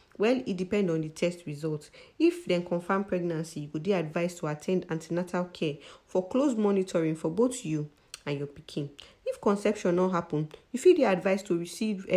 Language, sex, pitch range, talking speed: English, female, 160-195 Hz, 185 wpm